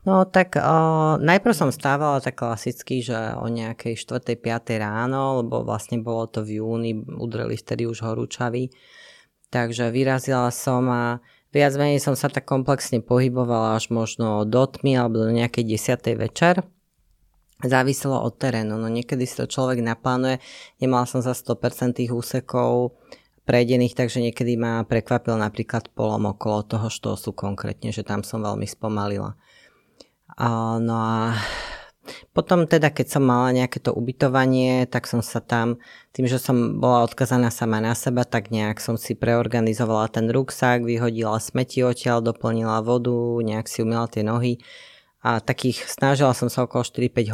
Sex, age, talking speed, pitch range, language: female, 20-39, 155 wpm, 115-130 Hz, Slovak